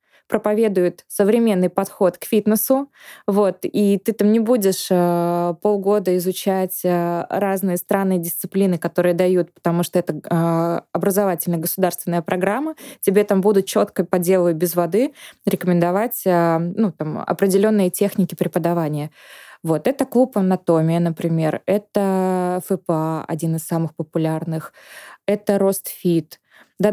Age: 20-39